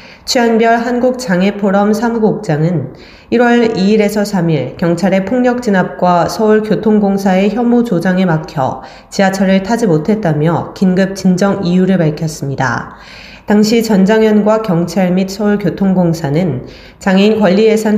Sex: female